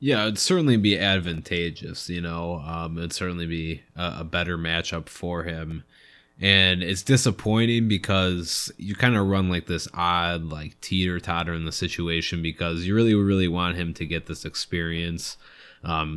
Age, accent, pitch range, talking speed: 20-39, American, 80-95 Hz, 165 wpm